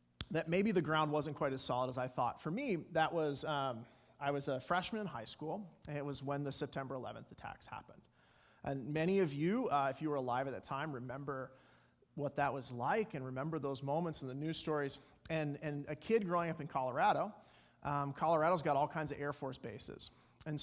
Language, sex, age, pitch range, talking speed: English, male, 30-49, 140-165 Hz, 220 wpm